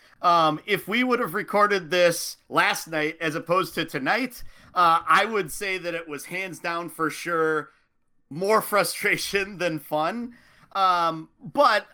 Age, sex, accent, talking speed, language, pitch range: 30-49, male, American, 150 wpm, English, 155-185 Hz